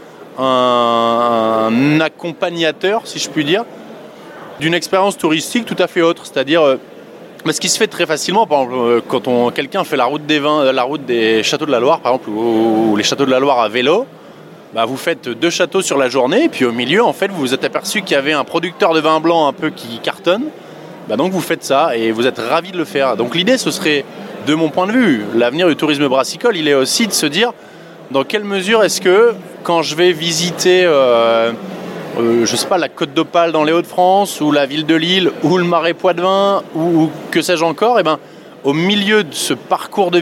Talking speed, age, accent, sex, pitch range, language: 225 wpm, 20-39, French, male, 140-185 Hz, French